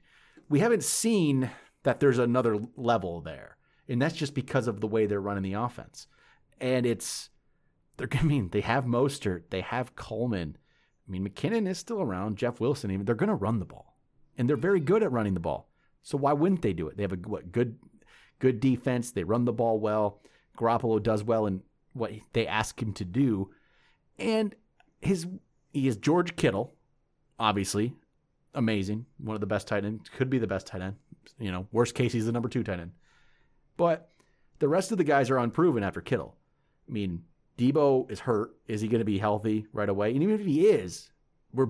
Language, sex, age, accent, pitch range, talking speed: English, male, 30-49, American, 105-140 Hz, 200 wpm